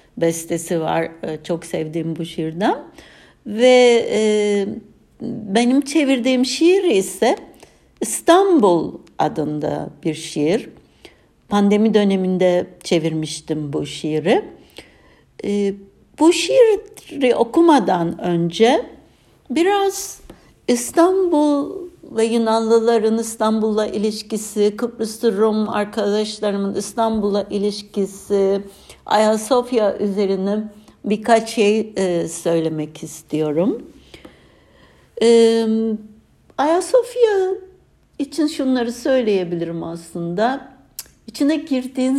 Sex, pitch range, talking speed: female, 175-245 Hz, 70 wpm